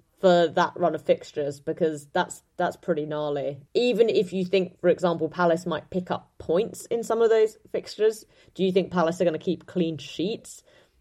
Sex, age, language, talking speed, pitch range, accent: female, 20-39, English, 195 wpm, 160-185 Hz, British